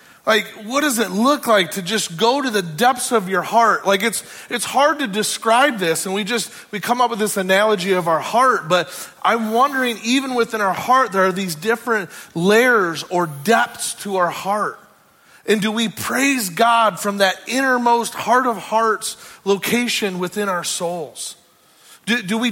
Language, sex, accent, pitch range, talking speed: English, male, American, 185-235 Hz, 185 wpm